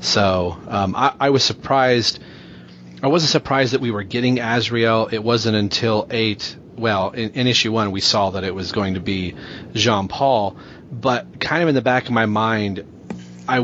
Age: 30-49